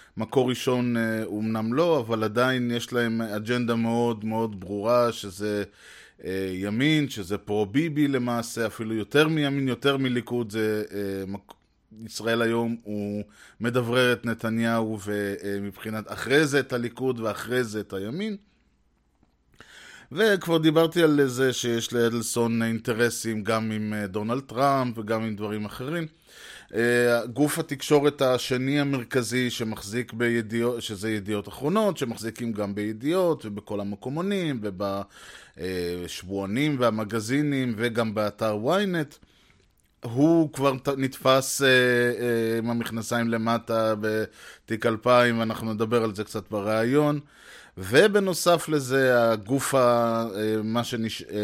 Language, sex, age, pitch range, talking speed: Hebrew, male, 20-39, 110-130 Hz, 110 wpm